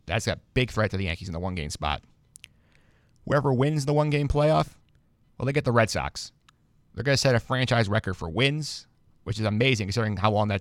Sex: male